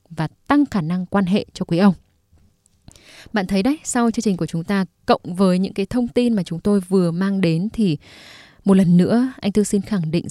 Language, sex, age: Vietnamese, female, 10-29